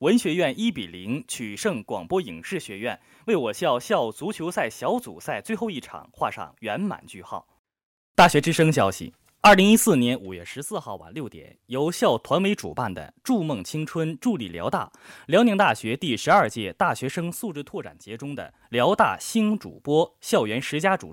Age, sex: 20-39, male